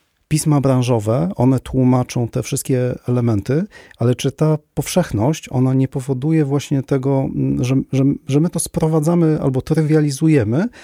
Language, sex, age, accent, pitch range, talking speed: Polish, male, 40-59, native, 120-145 Hz, 135 wpm